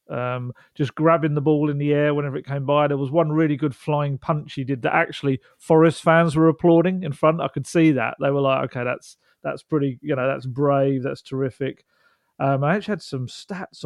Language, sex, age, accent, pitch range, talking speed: English, male, 40-59, British, 135-160 Hz, 225 wpm